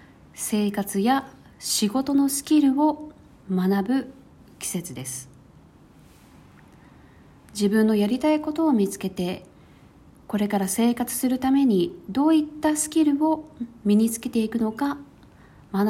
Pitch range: 180-265 Hz